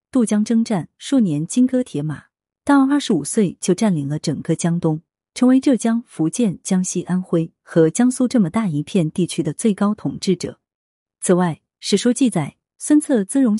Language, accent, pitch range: Chinese, native, 170-230 Hz